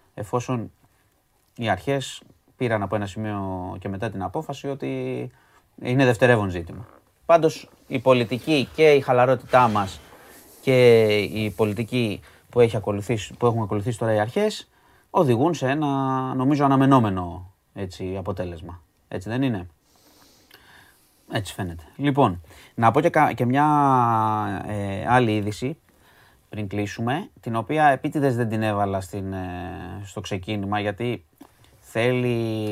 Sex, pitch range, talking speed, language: male, 100-130 Hz, 120 wpm, Greek